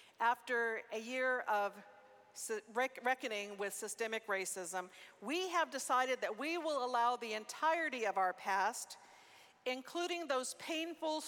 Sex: female